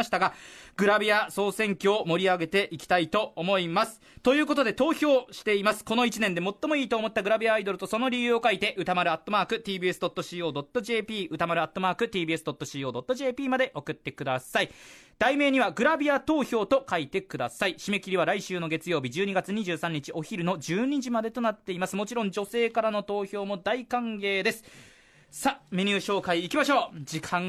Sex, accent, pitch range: male, native, 170-240 Hz